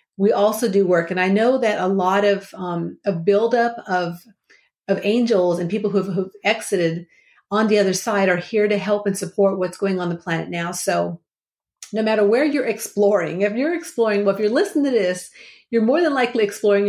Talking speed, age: 205 wpm, 50-69